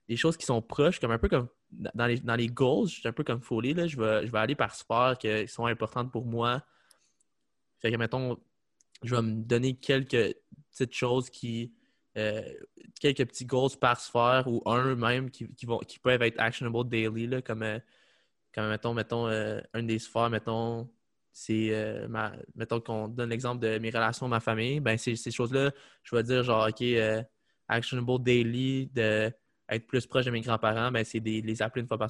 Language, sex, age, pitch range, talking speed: French, male, 20-39, 115-130 Hz, 205 wpm